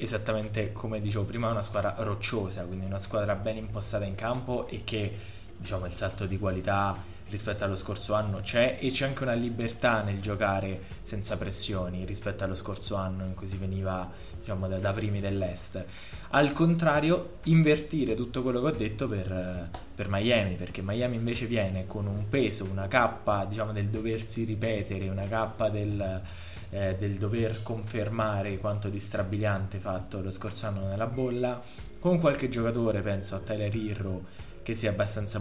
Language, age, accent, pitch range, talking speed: Italian, 20-39, native, 95-110 Hz, 170 wpm